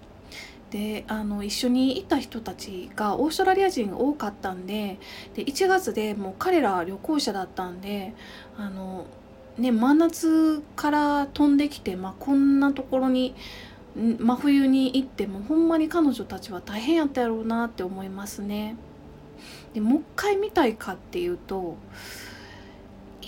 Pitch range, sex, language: 205-315 Hz, female, Japanese